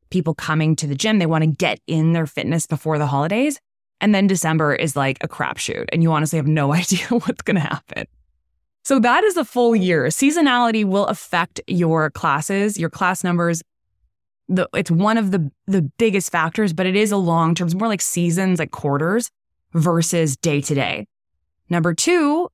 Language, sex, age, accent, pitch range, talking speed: English, female, 20-39, American, 150-200 Hz, 190 wpm